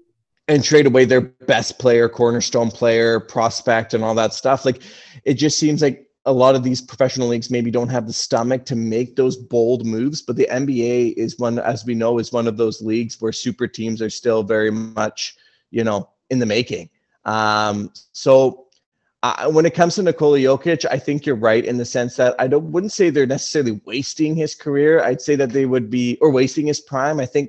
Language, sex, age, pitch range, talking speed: English, male, 30-49, 115-135 Hz, 210 wpm